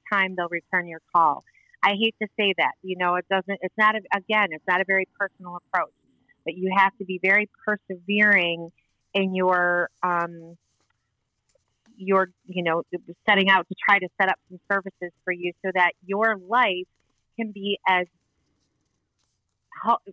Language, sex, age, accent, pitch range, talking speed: English, female, 30-49, American, 175-195 Hz, 165 wpm